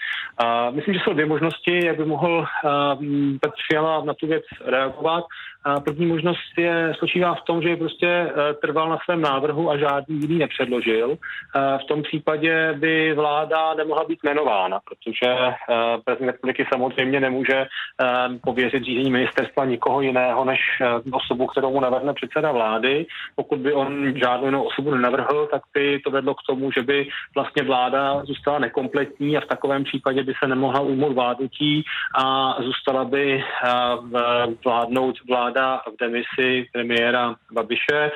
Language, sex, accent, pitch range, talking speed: Czech, male, native, 125-150 Hz, 145 wpm